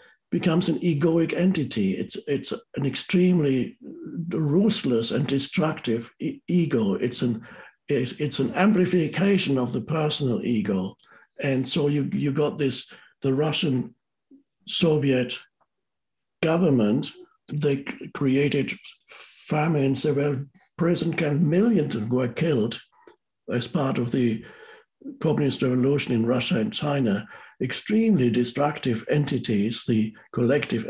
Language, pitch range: English, 140-185 Hz